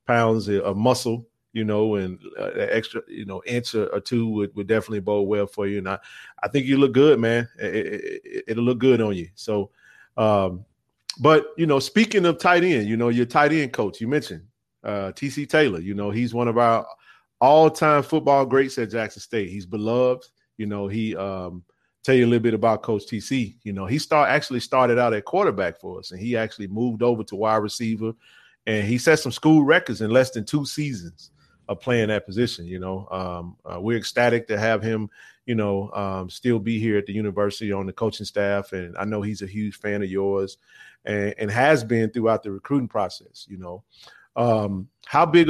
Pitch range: 100-125 Hz